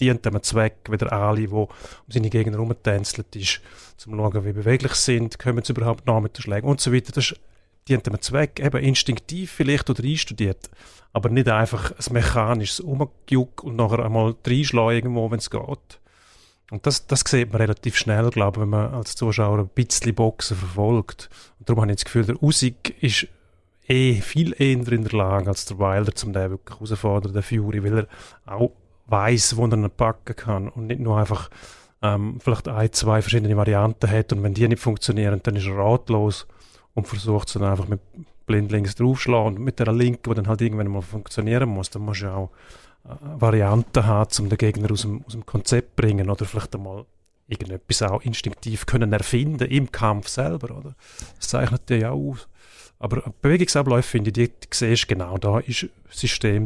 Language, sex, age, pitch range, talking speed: German, male, 30-49, 105-120 Hz, 195 wpm